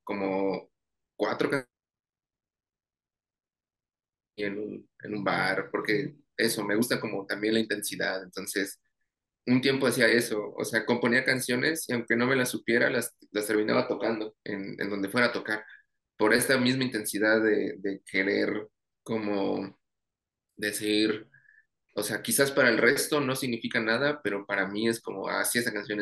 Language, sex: Spanish, male